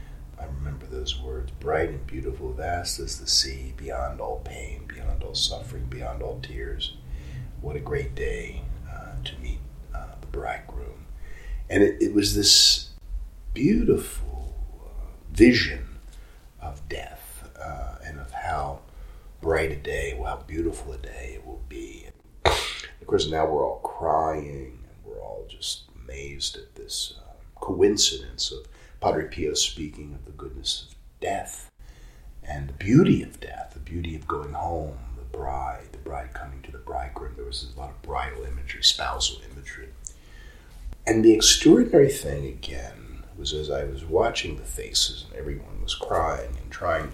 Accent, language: American, English